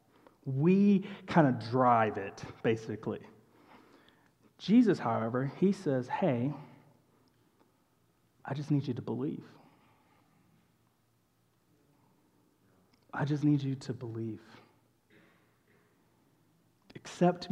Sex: male